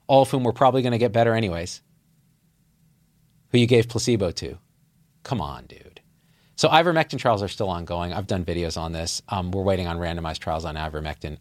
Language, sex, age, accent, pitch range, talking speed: English, male, 40-59, American, 95-150 Hz, 190 wpm